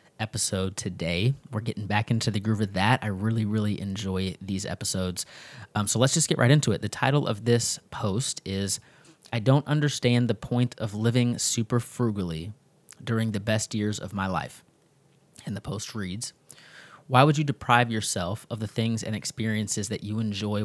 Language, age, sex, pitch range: English, 20-39, male, 105-120 Hz